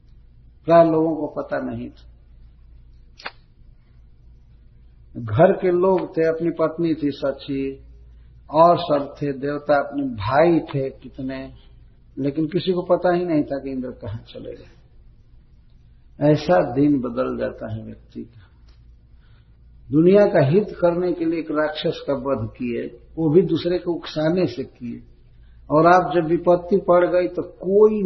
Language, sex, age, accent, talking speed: Hindi, male, 50-69, native, 145 wpm